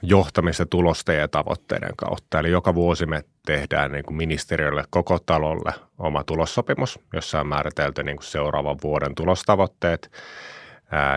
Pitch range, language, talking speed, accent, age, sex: 80-95 Hz, Finnish, 135 wpm, native, 30-49, male